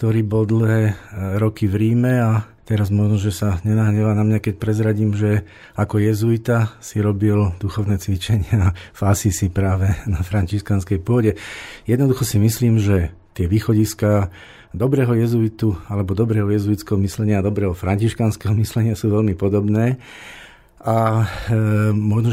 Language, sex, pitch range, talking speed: Slovak, male, 100-115 Hz, 135 wpm